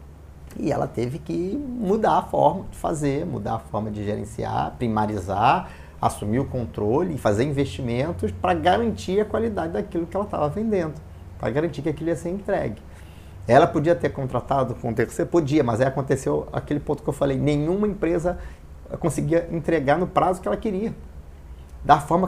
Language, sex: Portuguese, male